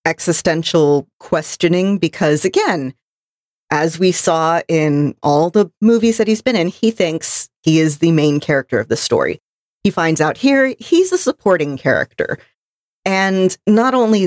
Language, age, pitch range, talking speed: English, 40-59, 150-195 Hz, 150 wpm